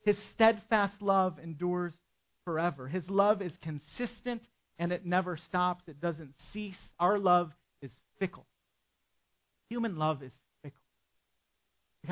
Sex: male